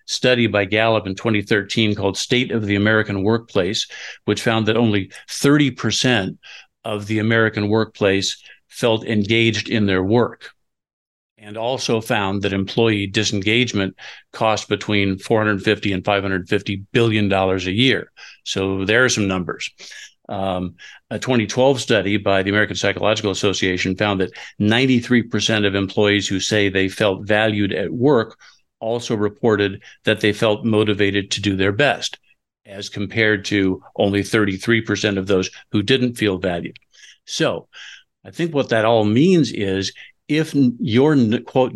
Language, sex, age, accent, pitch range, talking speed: English, male, 50-69, American, 100-115 Hz, 140 wpm